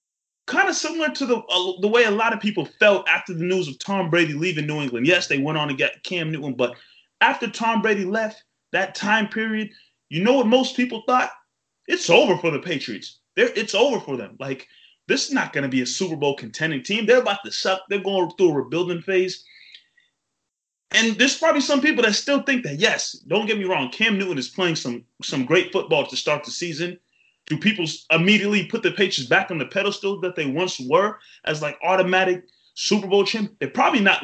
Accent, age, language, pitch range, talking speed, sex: American, 20-39, English, 175-225 Hz, 220 wpm, male